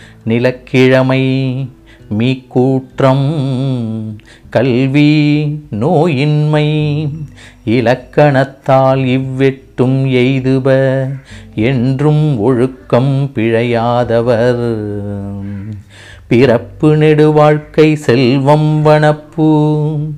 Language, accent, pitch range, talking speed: Tamil, native, 115-150 Hz, 50 wpm